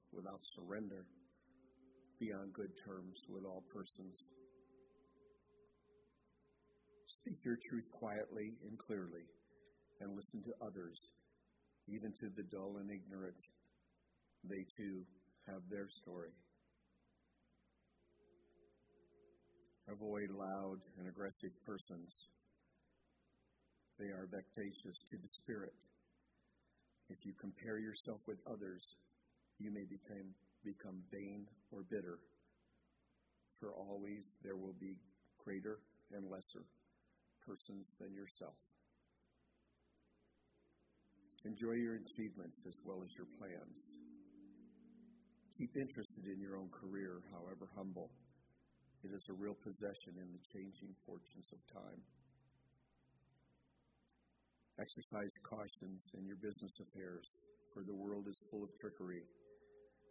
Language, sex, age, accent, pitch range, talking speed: English, male, 50-69, American, 90-115 Hz, 105 wpm